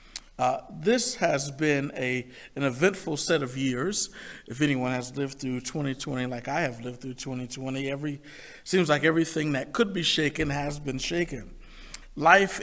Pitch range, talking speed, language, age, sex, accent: 135-165 Hz, 160 wpm, English, 50-69, male, American